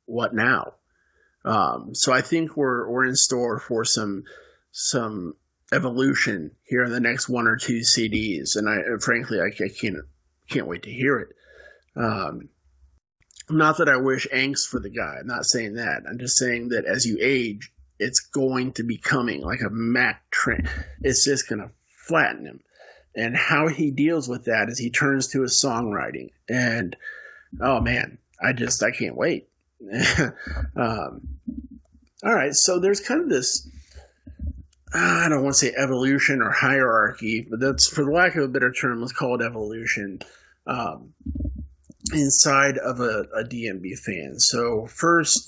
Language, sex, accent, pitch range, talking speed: English, male, American, 115-145 Hz, 165 wpm